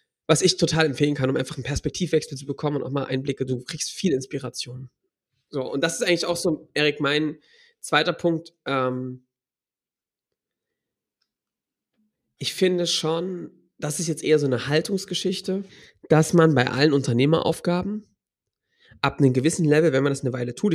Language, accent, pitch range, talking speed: German, German, 130-160 Hz, 160 wpm